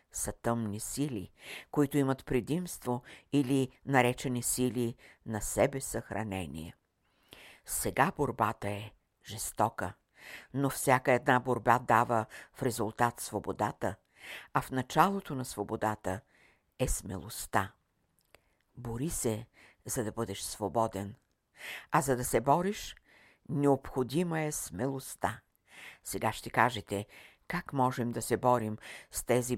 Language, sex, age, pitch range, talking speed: Bulgarian, female, 60-79, 110-140 Hz, 110 wpm